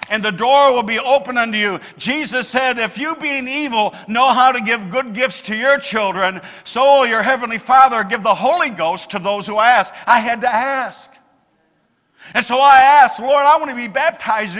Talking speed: 205 wpm